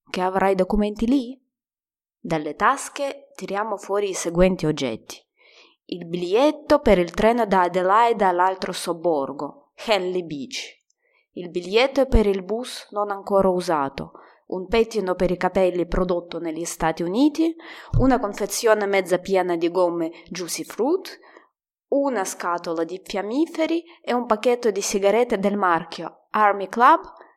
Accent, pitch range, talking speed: native, 180-255 Hz, 130 wpm